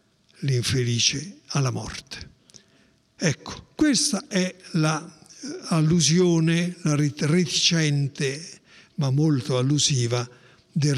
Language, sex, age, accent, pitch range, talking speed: Italian, male, 60-79, native, 140-185 Hz, 65 wpm